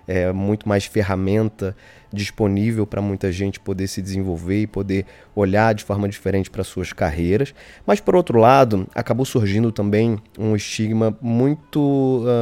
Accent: Brazilian